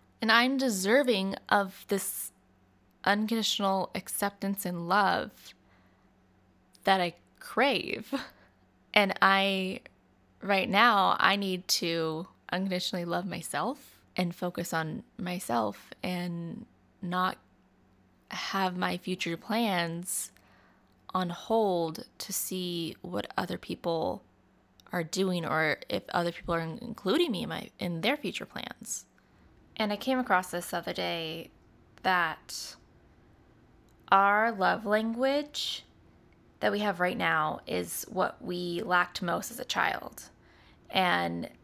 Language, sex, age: English, female, 20-39